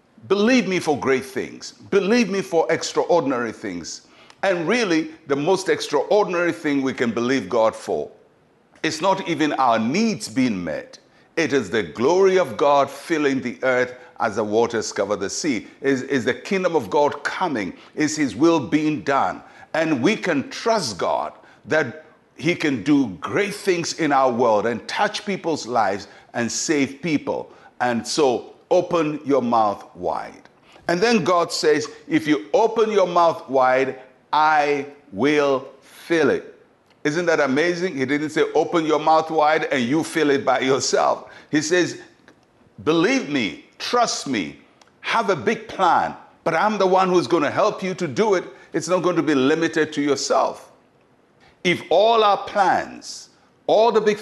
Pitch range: 145-205 Hz